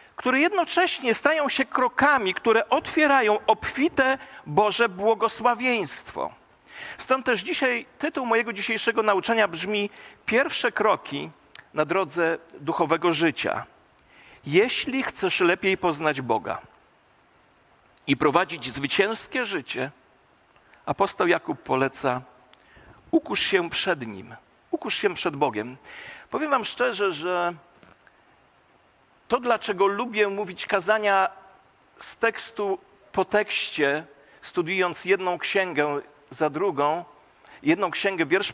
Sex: male